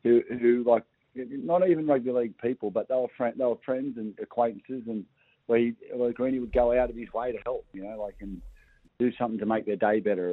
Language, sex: English, male